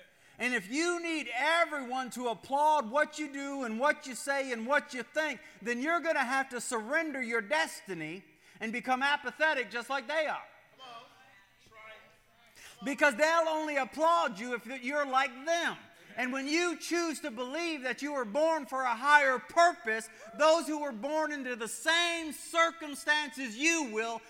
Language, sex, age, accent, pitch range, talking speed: English, male, 50-69, American, 190-280 Hz, 165 wpm